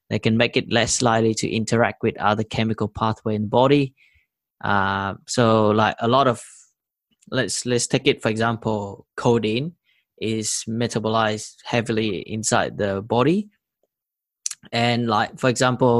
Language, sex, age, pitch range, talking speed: English, male, 20-39, 105-120 Hz, 145 wpm